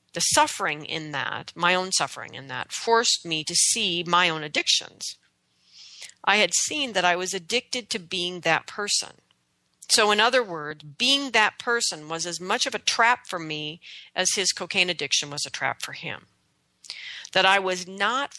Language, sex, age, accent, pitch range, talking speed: English, female, 40-59, American, 170-225 Hz, 180 wpm